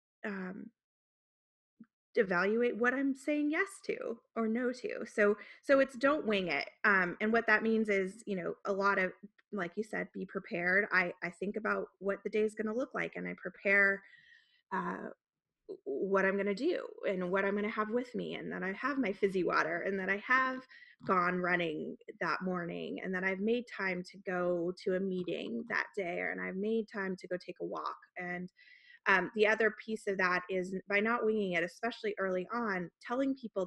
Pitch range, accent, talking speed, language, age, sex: 185-235 Hz, American, 200 wpm, English, 20-39, female